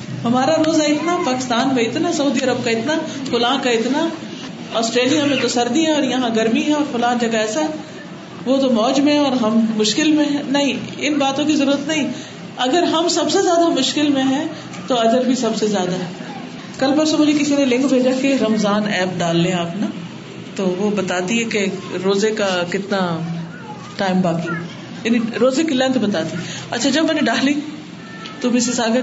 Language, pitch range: Urdu, 215-290 Hz